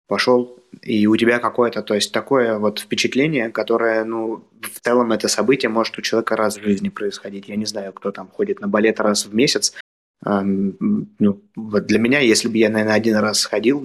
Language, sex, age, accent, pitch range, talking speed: Russian, male, 20-39, native, 105-125 Hz, 195 wpm